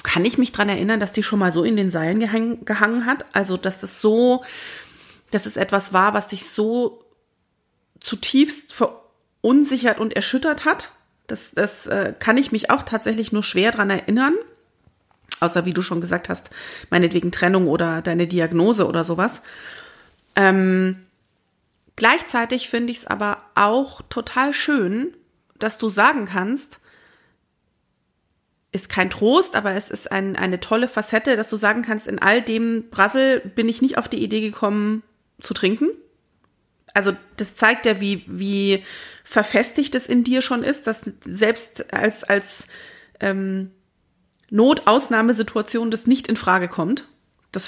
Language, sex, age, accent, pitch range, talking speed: German, female, 30-49, German, 200-240 Hz, 155 wpm